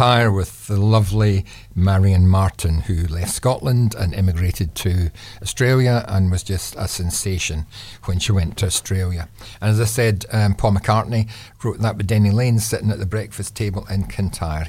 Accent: British